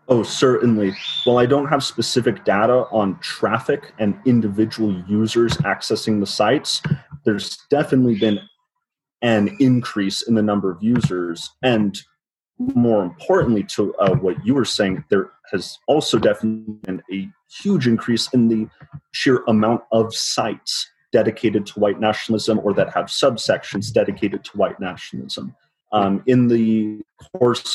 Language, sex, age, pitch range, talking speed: English, male, 30-49, 105-120 Hz, 140 wpm